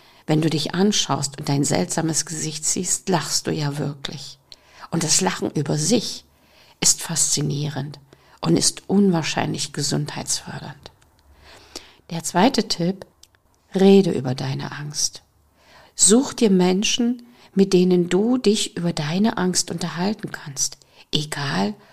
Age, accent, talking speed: 50-69, German, 120 wpm